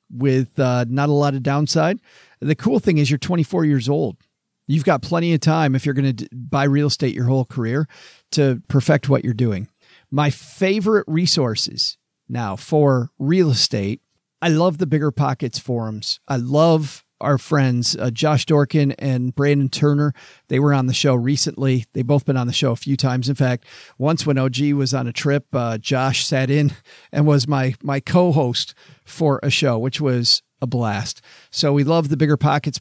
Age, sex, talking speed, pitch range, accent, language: 40-59, male, 190 wpm, 130-150 Hz, American, English